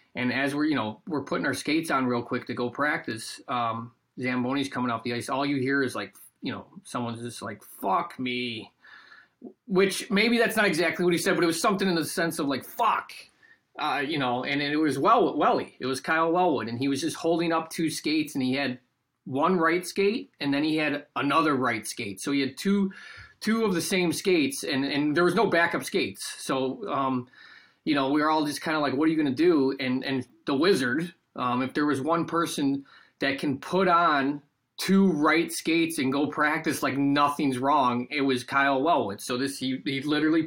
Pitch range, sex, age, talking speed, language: 130-170 Hz, male, 30-49, 220 wpm, English